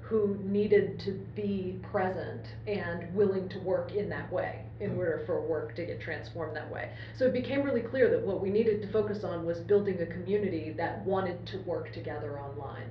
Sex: female